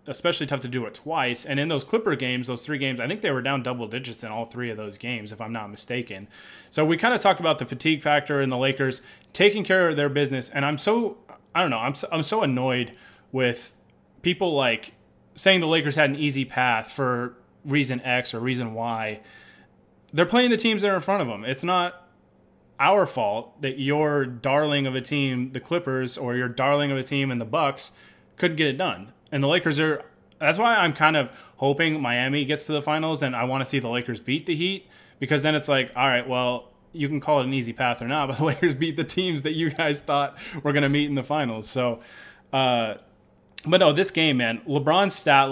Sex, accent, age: male, American, 20-39